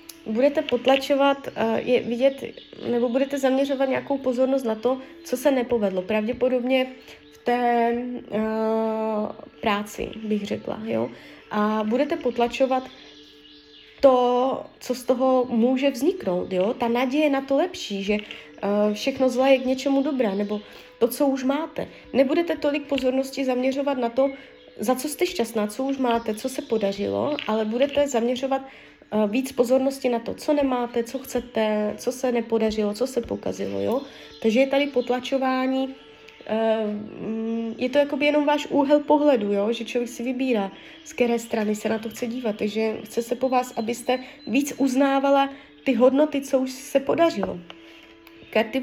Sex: female